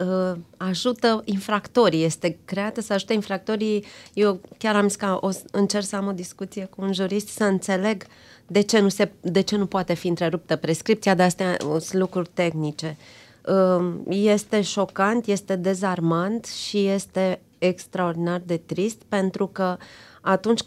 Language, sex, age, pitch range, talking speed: Romanian, female, 30-49, 170-205 Hz, 150 wpm